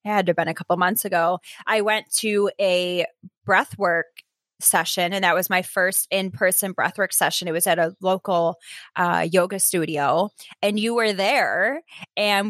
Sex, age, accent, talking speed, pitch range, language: female, 20-39, American, 175 wpm, 180-220 Hz, English